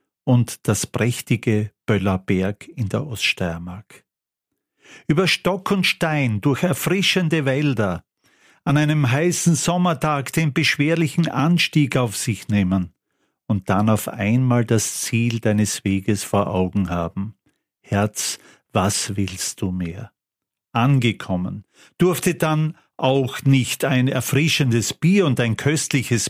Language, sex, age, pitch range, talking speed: German, male, 50-69, 100-140 Hz, 115 wpm